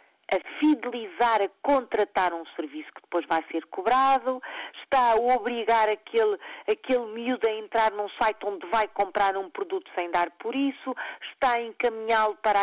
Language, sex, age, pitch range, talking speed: Portuguese, female, 50-69, 205-320 Hz, 160 wpm